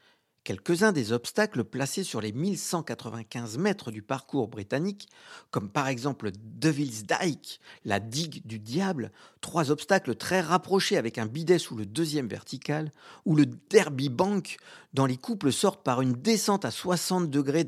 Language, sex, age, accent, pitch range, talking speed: French, male, 50-69, French, 120-175 Hz, 155 wpm